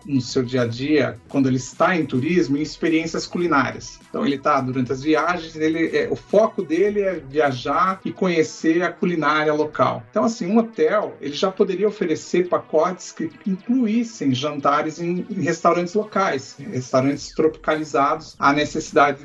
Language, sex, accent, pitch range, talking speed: Portuguese, male, Brazilian, 145-195 Hz, 160 wpm